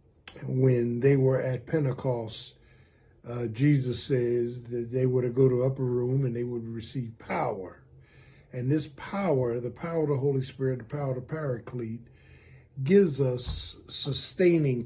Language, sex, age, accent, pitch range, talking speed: English, male, 50-69, American, 115-140 Hz, 160 wpm